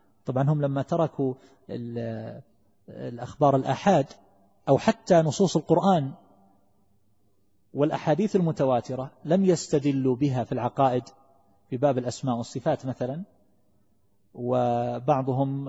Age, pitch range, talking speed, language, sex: 40-59, 105-145 Hz, 90 wpm, Arabic, male